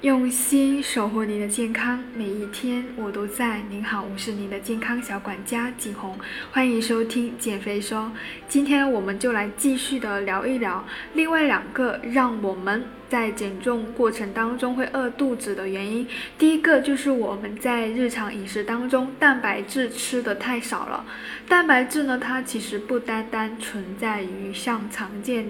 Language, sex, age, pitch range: Chinese, female, 10-29, 210-255 Hz